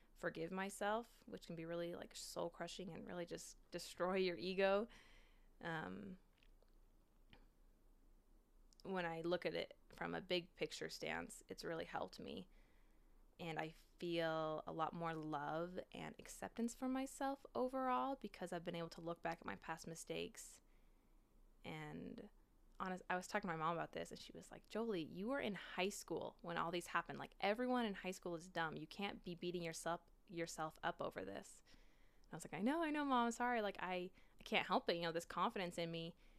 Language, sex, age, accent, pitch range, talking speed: English, female, 20-39, American, 165-195 Hz, 190 wpm